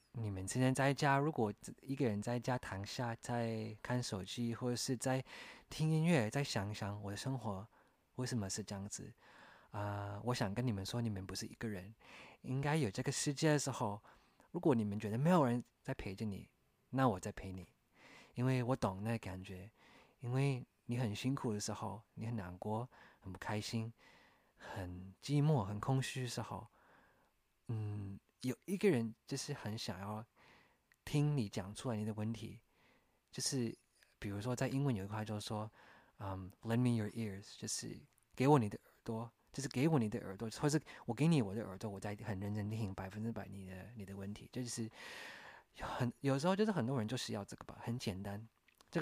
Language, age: English, 20-39